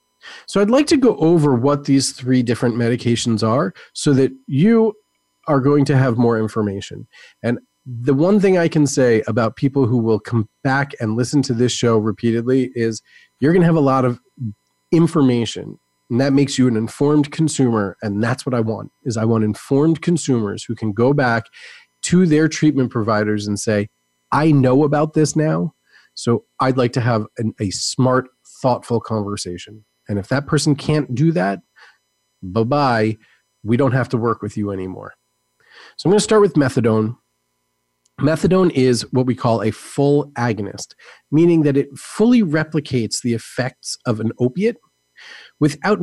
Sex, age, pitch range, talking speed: male, 30-49, 115-150 Hz, 175 wpm